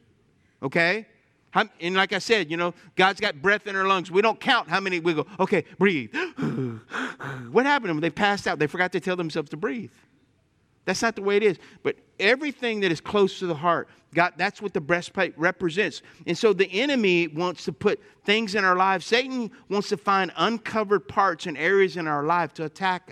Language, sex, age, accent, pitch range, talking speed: English, male, 50-69, American, 145-200 Hz, 200 wpm